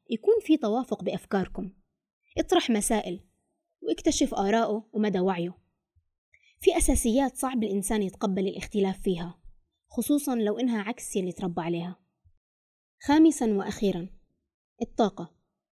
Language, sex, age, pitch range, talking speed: Arabic, female, 20-39, 190-245 Hz, 105 wpm